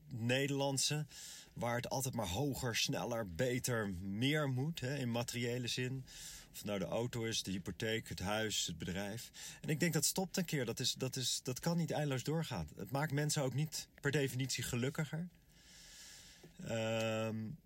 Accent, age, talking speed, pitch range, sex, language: Dutch, 40-59, 175 wpm, 100-140 Hz, male, Dutch